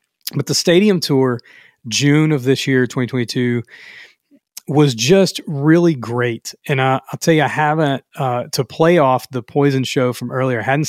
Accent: American